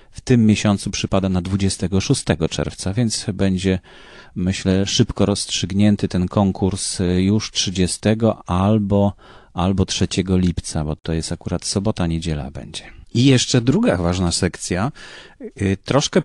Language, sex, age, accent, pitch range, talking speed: Polish, male, 30-49, native, 95-120 Hz, 120 wpm